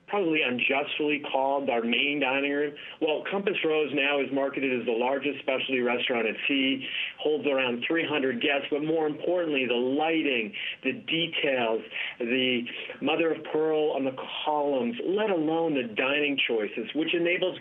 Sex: male